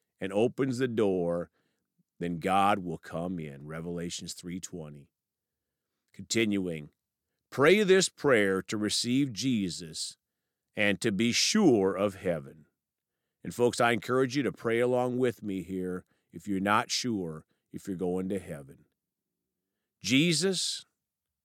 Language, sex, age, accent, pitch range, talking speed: English, male, 50-69, American, 90-135 Hz, 125 wpm